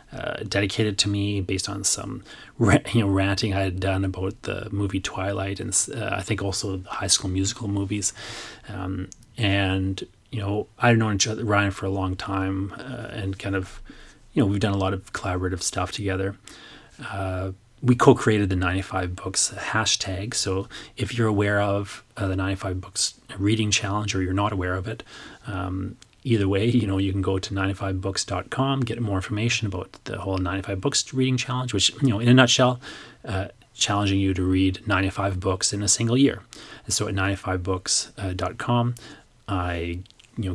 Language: English